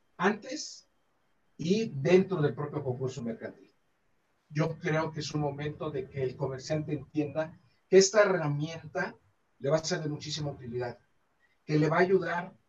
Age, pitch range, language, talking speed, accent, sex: 50-69, 130-160 Hz, Spanish, 155 wpm, Mexican, male